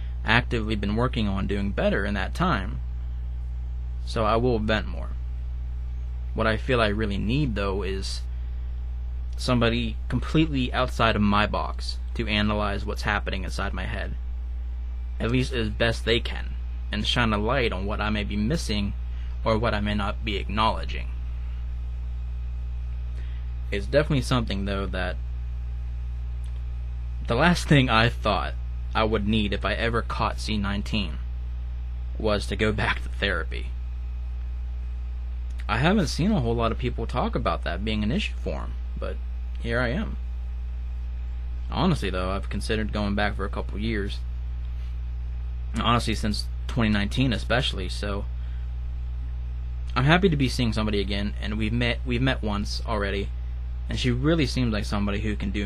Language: English